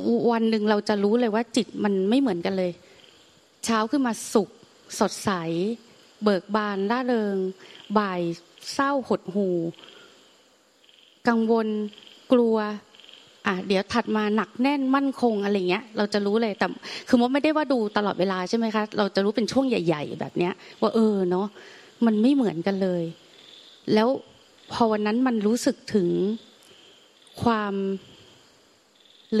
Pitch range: 195-240 Hz